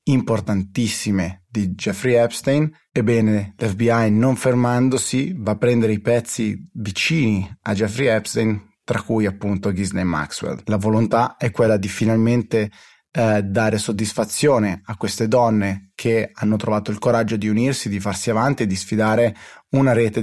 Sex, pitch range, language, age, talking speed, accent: male, 105-120 Hz, Italian, 30-49, 145 wpm, native